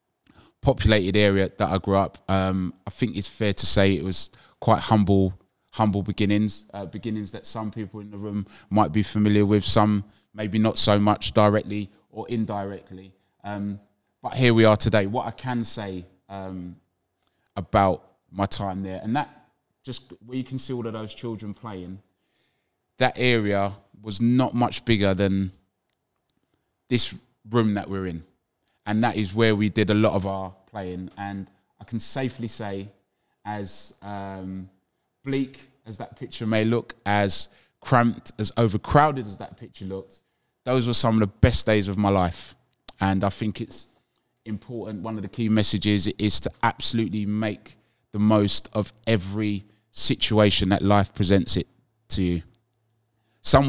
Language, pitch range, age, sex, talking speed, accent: English, 100-115 Hz, 20-39, male, 165 wpm, British